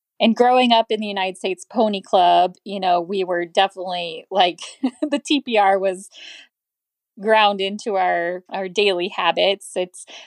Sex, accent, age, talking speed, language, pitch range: female, American, 20-39, 145 wpm, English, 180-245 Hz